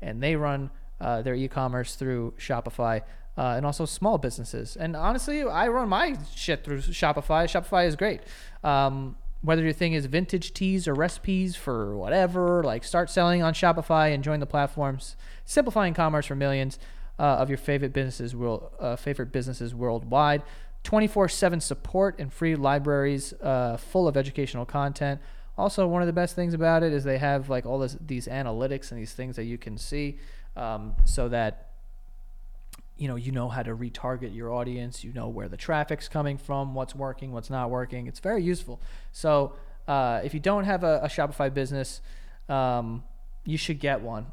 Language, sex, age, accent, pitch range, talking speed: English, male, 20-39, American, 125-165 Hz, 180 wpm